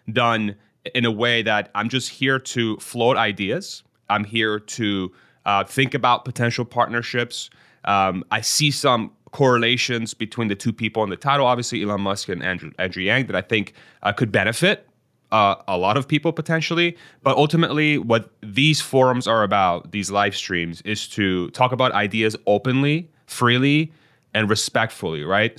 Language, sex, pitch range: English, male, 105-130 Hz